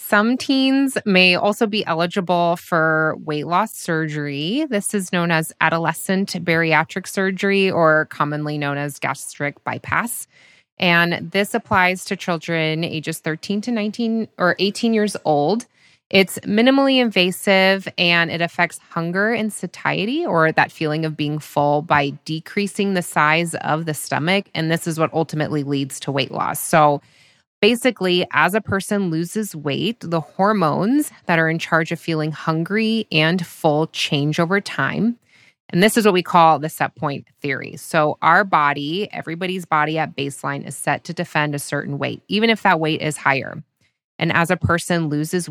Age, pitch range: 20-39, 150-195 Hz